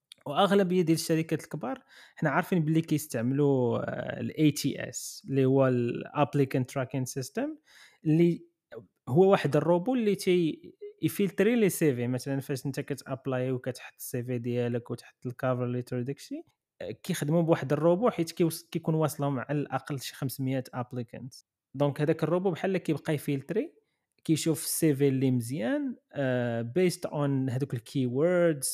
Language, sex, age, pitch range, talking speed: Arabic, male, 20-39, 135-175 Hz, 135 wpm